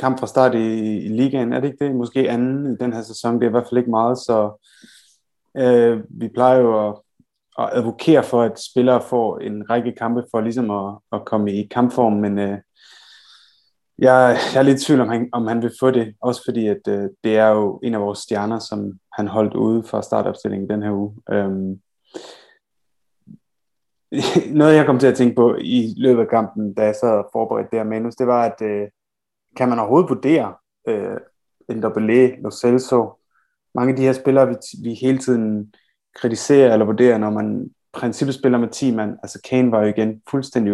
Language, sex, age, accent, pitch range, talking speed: Danish, male, 20-39, native, 105-125 Hz, 195 wpm